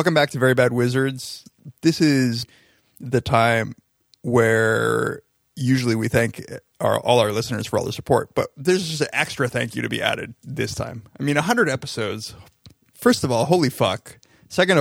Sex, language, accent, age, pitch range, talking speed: male, English, American, 30-49, 115-135 Hz, 180 wpm